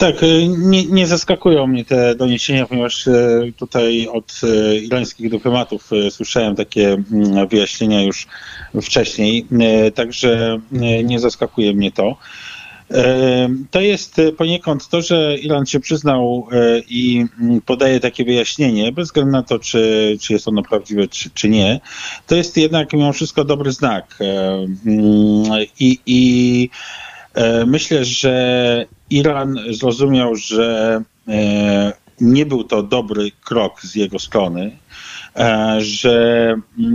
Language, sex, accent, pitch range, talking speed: Polish, male, native, 110-140 Hz, 110 wpm